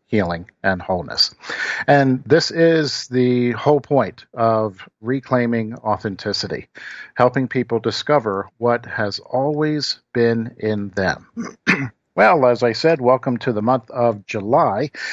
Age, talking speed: 50-69, 125 wpm